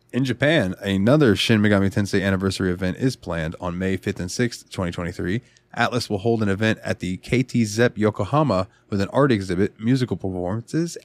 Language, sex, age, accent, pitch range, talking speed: English, male, 20-39, American, 90-120 Hz, 175 wpm